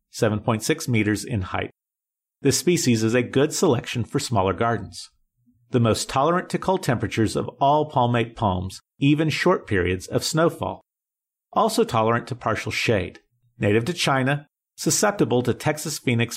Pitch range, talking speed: 110-150 Hz, 140 wpm